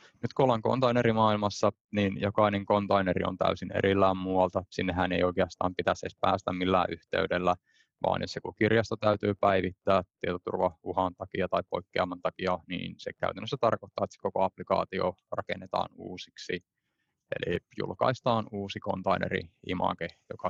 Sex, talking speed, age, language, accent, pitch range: male, 130 wpm, 20-39, Finnish, native, 95-110 Hz